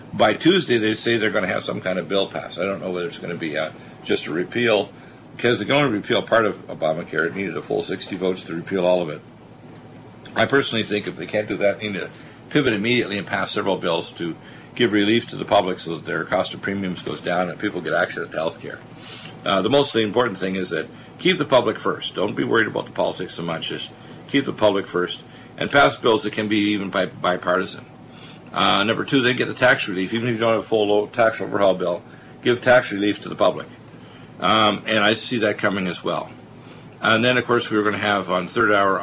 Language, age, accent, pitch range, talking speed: English, 50-69, American, 90-105 Hz, 240 wpm